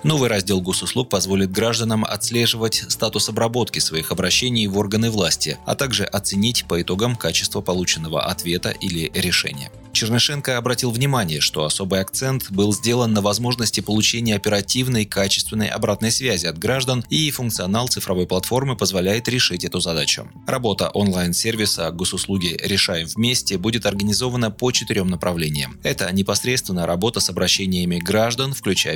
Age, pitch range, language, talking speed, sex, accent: 20-39, 90-120 Hz, Russian, 135 wpm, male, native